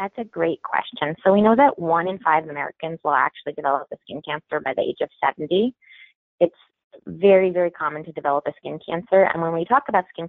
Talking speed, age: 220 wpm, 20-39